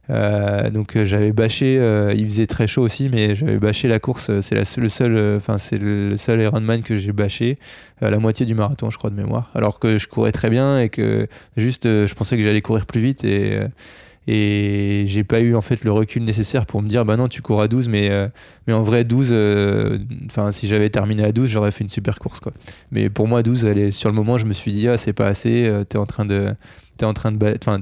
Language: French